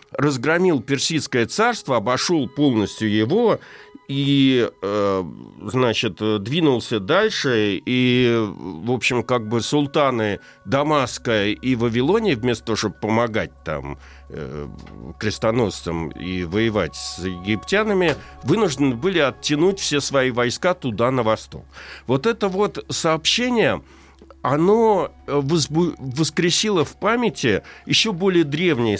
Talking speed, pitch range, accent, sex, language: 110 wpm, 110-155 Hz, native, male, Russian